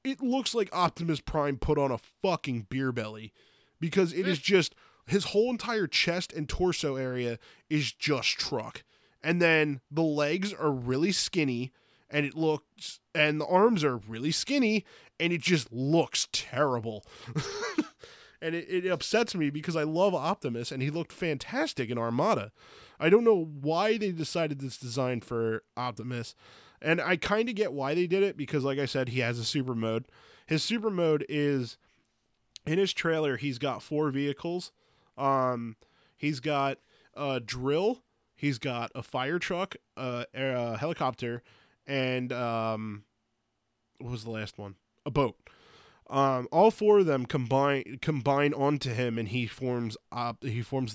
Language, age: English, 20-39